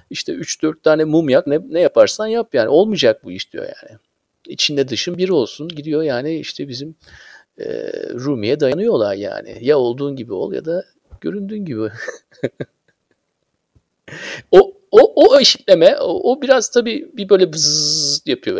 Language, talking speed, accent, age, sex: Turkish, 150 wpm, native, 50-69, male